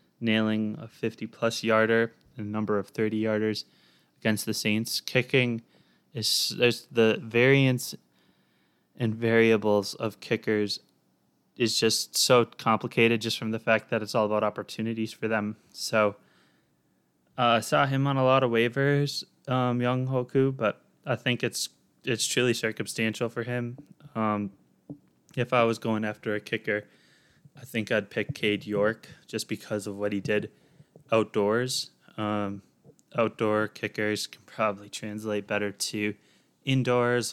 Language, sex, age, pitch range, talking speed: English, male, 20-39, 105-120 Hz, 145 wpm